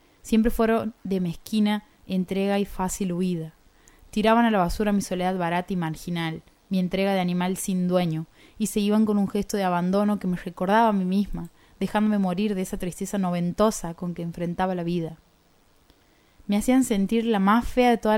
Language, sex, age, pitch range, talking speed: Spanish, female, 20-39, 175-210 Hz, 185 wpm